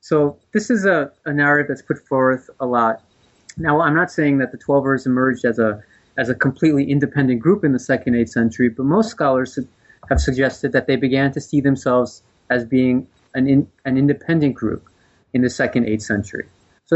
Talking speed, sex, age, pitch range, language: 195 wpm, male, 30-49, 125-145 Hz, English